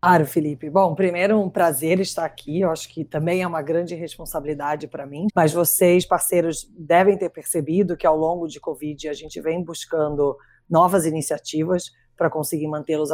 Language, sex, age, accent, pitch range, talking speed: Portuguese, female, 20-39, Brazilian, 155-195 Hz, 180 wpm